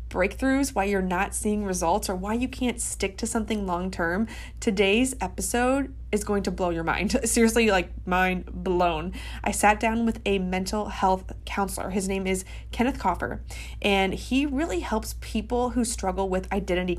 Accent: American